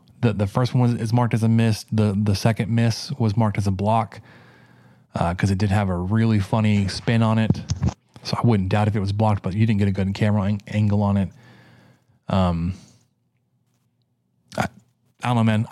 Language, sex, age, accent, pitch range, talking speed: English, male, 20-39, American, 100-115 Hz, 200 wpm